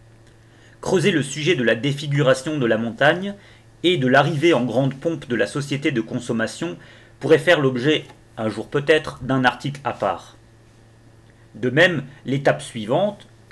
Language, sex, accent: French, male, French